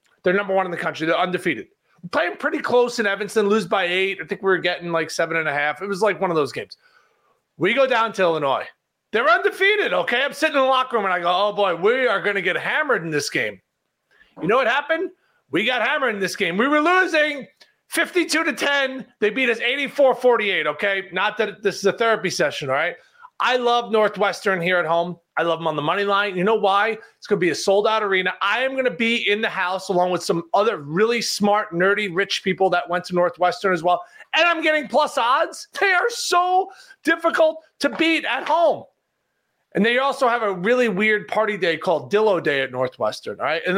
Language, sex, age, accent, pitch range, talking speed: English, male, 30-49, American, 185-270 Hz, 230 wpm